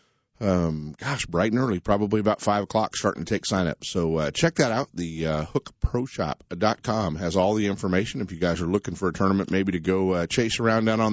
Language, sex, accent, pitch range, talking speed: English, male, American, 80-110 Hz, 225 wpm